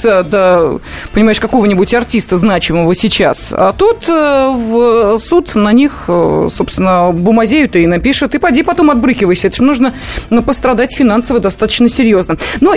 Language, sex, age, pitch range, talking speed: Russian, female, 30-49, 195-260 Hz, 145 wpm